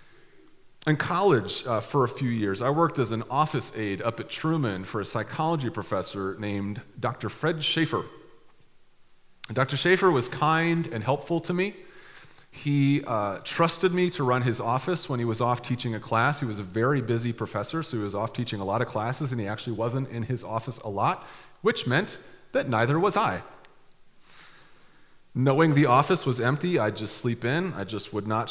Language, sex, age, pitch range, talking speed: English, male, 30-49, 115-155 Hz, 190 wpm